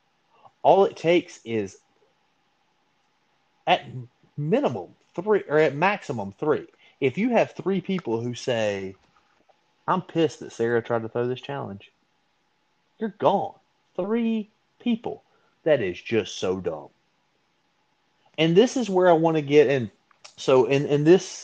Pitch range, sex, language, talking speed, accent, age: 115-160 Hz, male, English, 135 wpm, American, 30-49